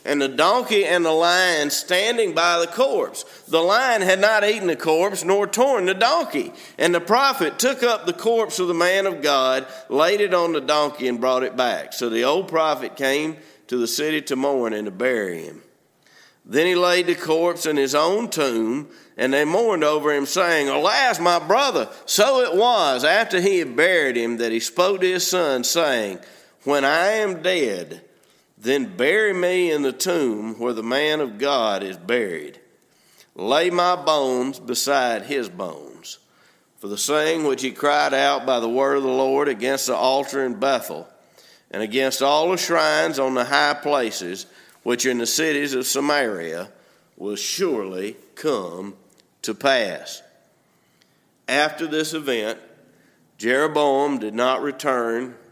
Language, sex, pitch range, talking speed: English, male, 130-180 Hz, 170 wpm